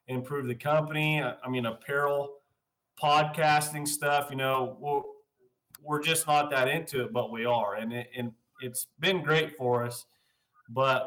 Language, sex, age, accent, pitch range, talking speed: English, male, 30-49, American, 125-155 Hz, 145 wpm